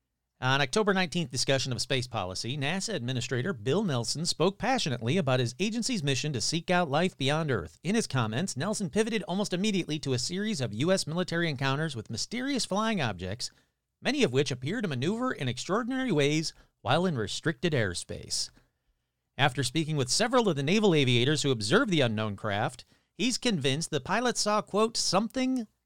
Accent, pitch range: American, 120-190 Hz